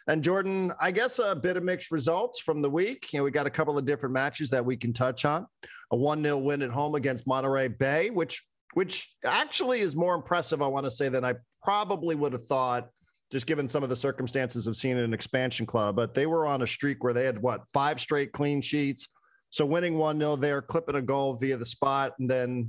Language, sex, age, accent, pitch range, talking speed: English, male, 40-59, American, 125-150 Hz, 230 wpm